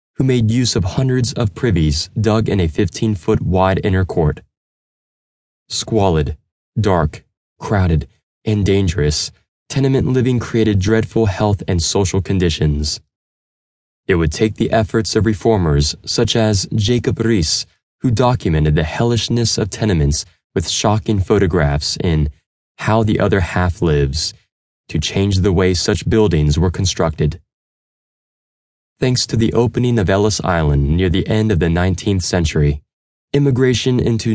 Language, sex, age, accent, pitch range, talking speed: English, male, 20-39, American, 85-115 Hz, 135 wpm